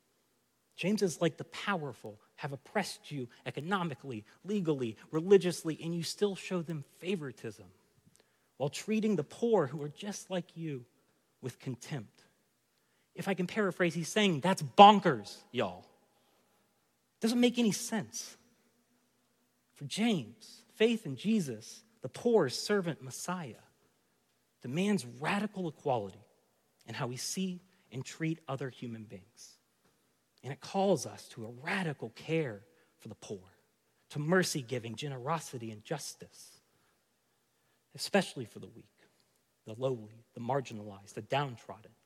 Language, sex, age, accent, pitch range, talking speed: English, male, 30-49, American, 125-190 Hz, 125 wpm